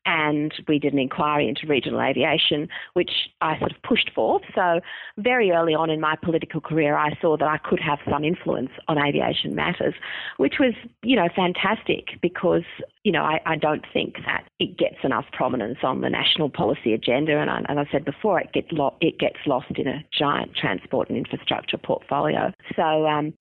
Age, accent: 40-59, Australian